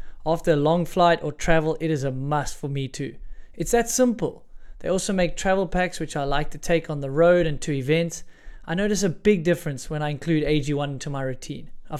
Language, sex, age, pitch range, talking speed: English, male, 20-39, 150-180 Hz, 225 wpm